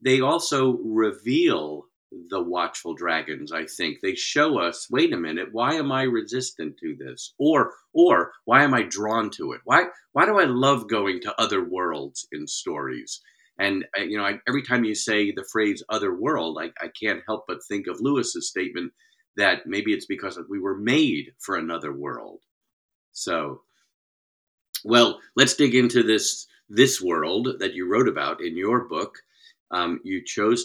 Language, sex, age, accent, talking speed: English, male, 50-69, American, 170 wpm